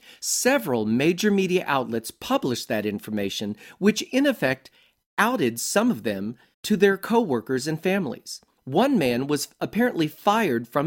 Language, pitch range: English, 120-195 Hz